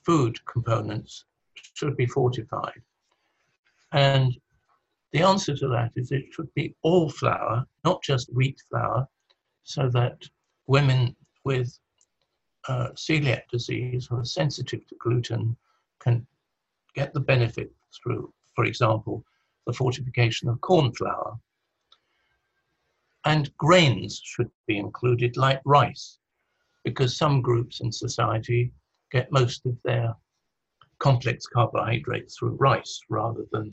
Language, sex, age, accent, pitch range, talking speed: English, male, 60-79, British, 120-145 Hz, 115 wpm